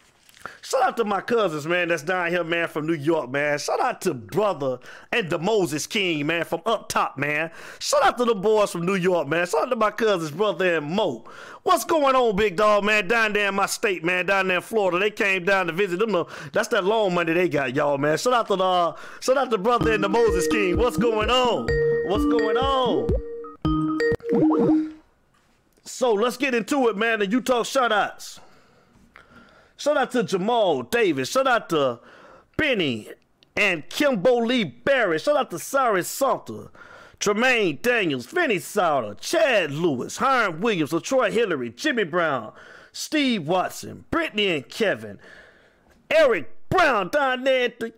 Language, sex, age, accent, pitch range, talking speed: English, male, 30-49, American, 175-255 Hz, 180 wpm